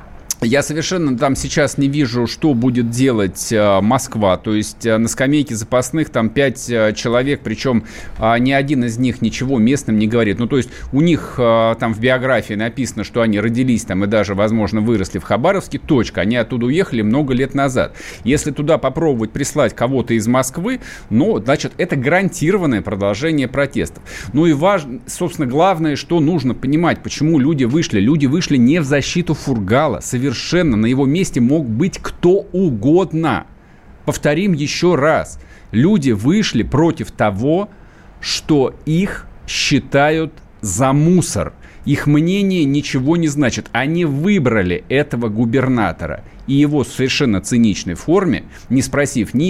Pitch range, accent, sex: 115-150 Hz, native, male